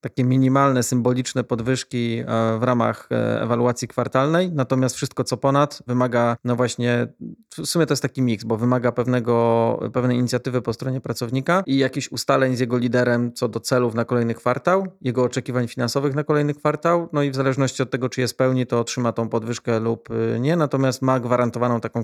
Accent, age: native, 30-49